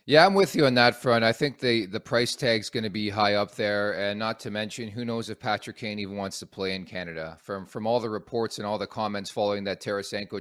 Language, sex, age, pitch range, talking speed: English, male, 30-49, 100-125 Hz, 265 wpm